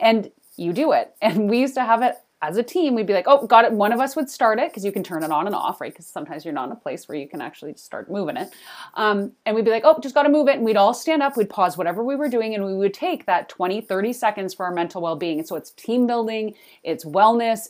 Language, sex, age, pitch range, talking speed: English, female, 30-49, 175-245 Hz, 305 wpm